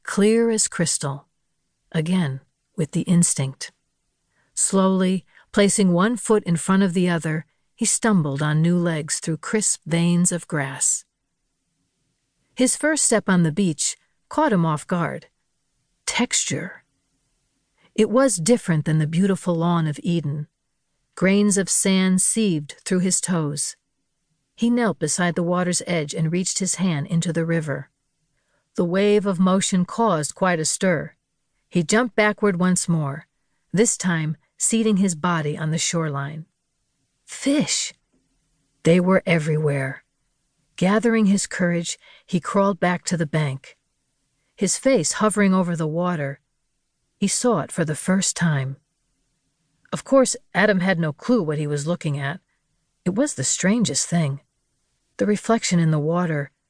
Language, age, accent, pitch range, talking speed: English, 50-69, American, 155-200 Hz, 140 wpm